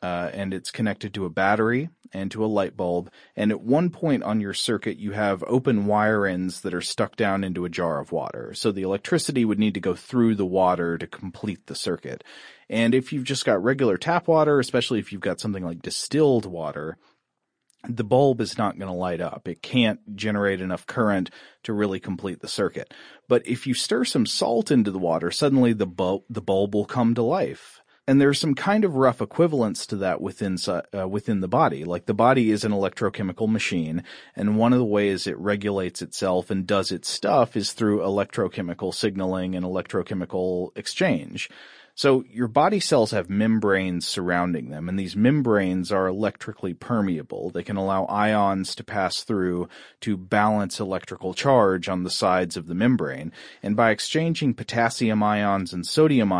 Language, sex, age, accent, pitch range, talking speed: English, male, 30-49, American, 95-120 Hz, 190 wpm